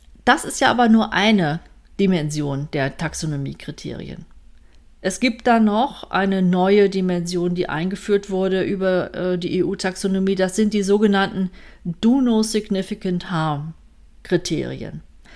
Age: 40-59